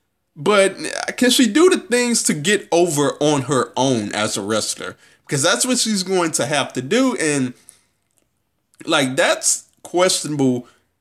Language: English